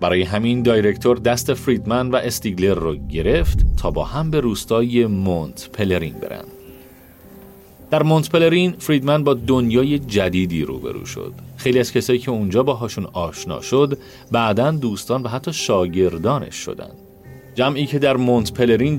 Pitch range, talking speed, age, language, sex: 85-130 Hz, 140 wpm, 40-59, Persian, male